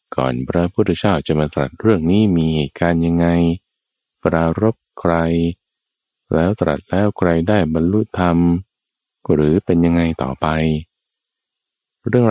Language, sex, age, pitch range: Thai, male, 20-39, 70-85 Hz